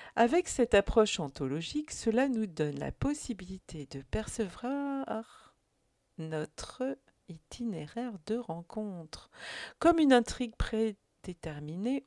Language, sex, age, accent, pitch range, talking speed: French, female, 50-69, French, 155-240 Hz, 95 wpm